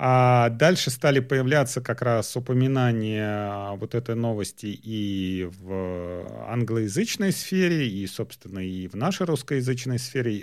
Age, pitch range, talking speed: 40-59, 105-135 Hz, 120 wpm